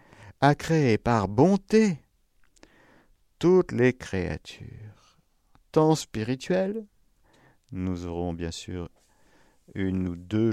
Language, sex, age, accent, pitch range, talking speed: French, male, 50-69, French, 90-140 Hz, 90 wpm